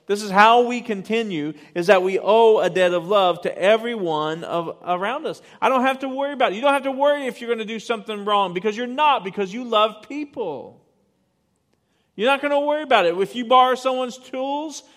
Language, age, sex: English, 40-59, male